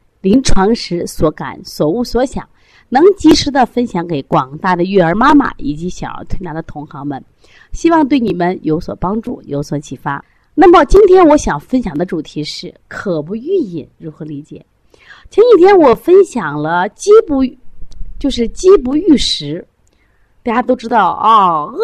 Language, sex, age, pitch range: Chinese, female, 30-49, 160-270 Hz